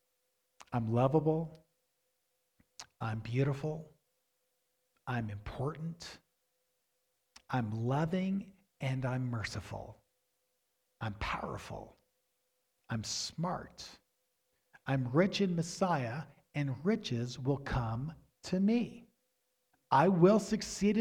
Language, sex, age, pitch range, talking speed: English, male, 50-69, 150-215 Hz, 80 wpm